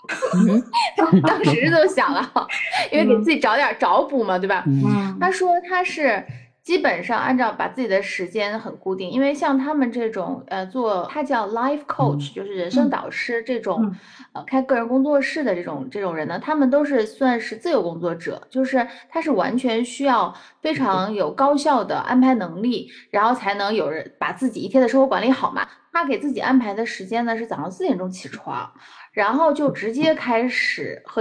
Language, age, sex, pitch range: Chinese, 20-39, female, 195-280 Hz